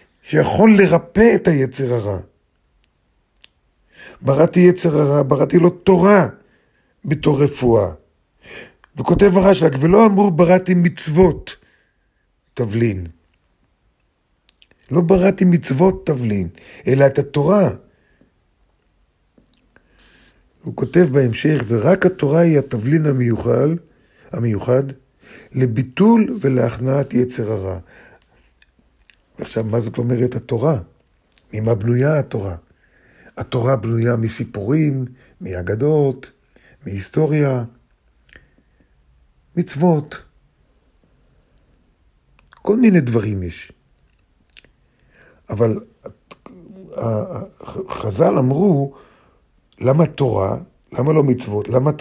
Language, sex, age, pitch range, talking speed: Hebrew, male, 50-69, 110-160 Hz, 75 wpm